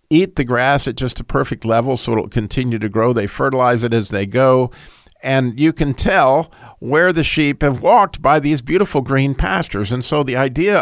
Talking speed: 205 wpm